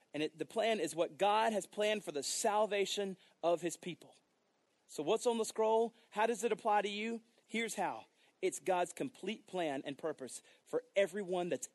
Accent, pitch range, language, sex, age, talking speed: American, 175-240 Hz, English, male, 30-49, 185 wpm